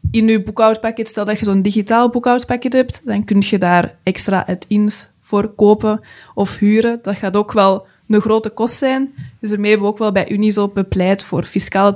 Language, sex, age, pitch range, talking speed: Dutch, female, 20-39, 190-225 Hz, 195 wpm